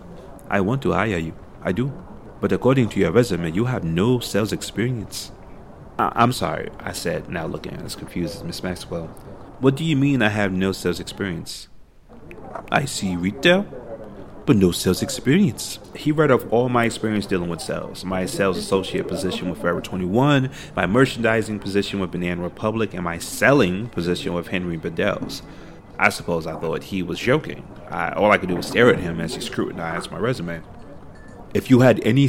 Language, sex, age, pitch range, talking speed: English, male, 30-49, 95-130 Hz, 185 wpm